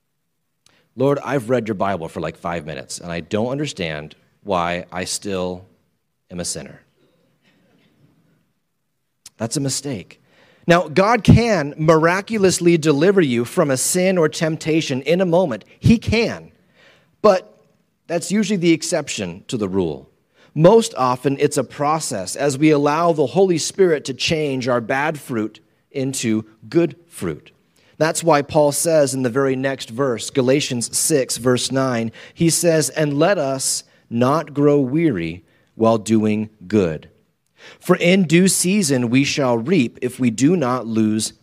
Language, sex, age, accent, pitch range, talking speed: English, male, 30-49, American, 125-165 Hz, 145 wpm